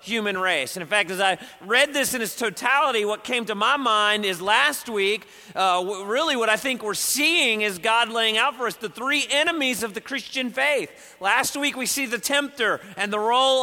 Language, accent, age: English, American, 40-59